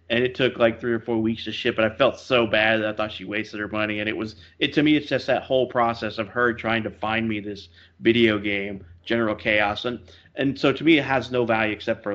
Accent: American